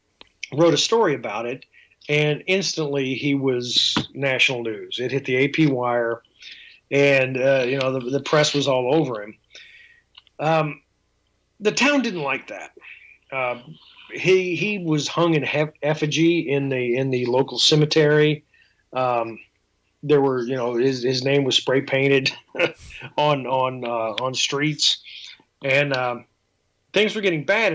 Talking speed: 150 wpm